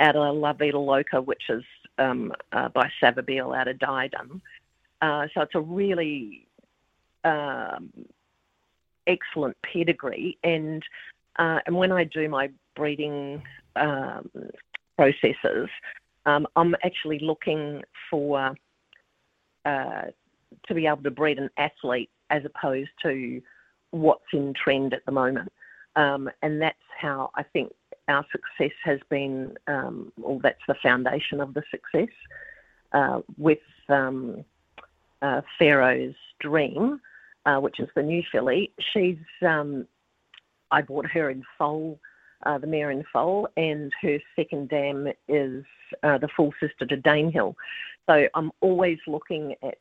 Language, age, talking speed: English, 50-69, 135 wpm